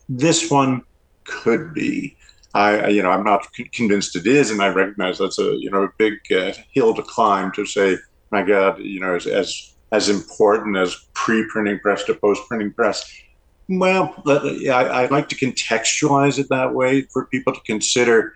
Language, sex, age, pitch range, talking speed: English, male, 50-69, 100-130 Hz, 175 wpm